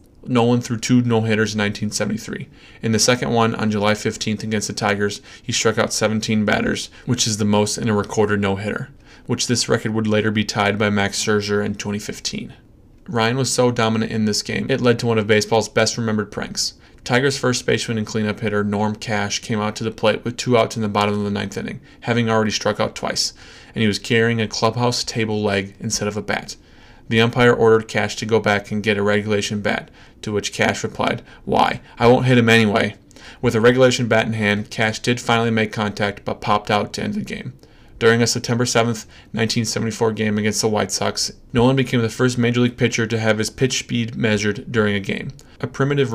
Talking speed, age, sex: 215 wpm, 20-39, male